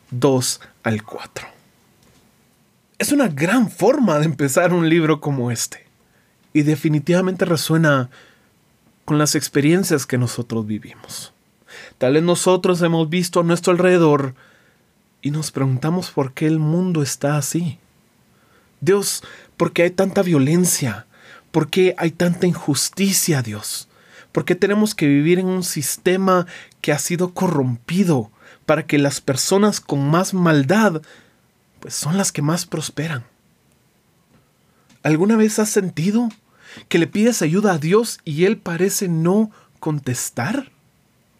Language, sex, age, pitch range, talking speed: Spanish, male, 30-49, 140-185 Hz, 130 wpm